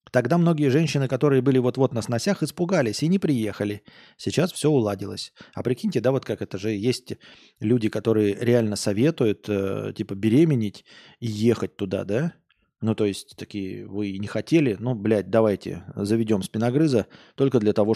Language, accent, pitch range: Russian, native, 105-140 Hz